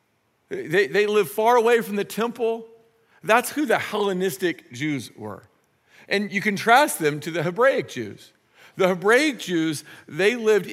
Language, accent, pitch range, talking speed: English, American, 180-245 Hz, 150 wpm